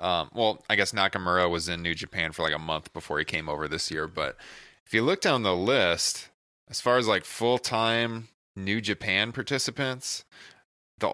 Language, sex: English, male